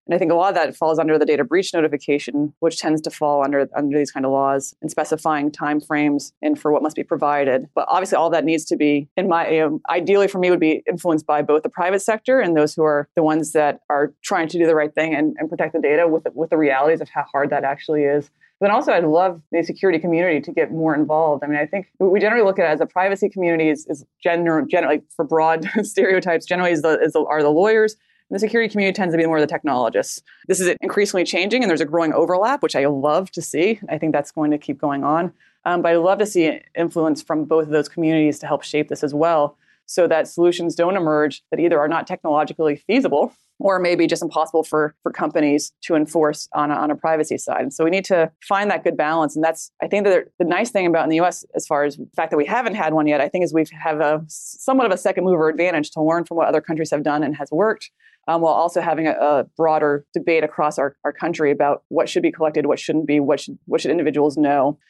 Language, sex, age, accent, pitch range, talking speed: English, female, 20-39, American, 150-175 Hz, 260 wpm